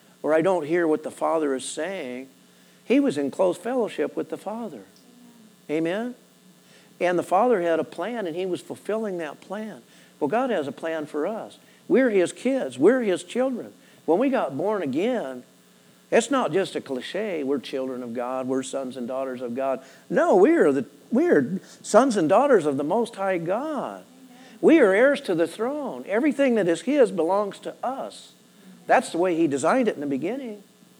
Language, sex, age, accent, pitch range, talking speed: English, male, 50-69, American, 160-230 Hz, 190 wpm